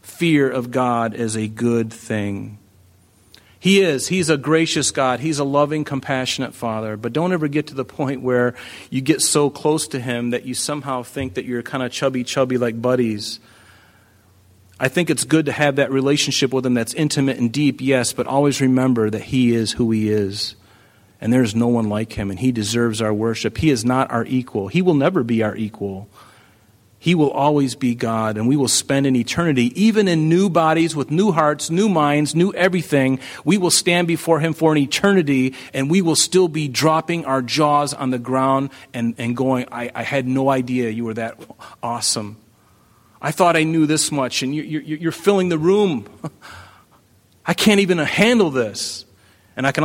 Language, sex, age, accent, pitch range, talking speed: English, male, 40-59, American, 115-150 Hz, 195 wpm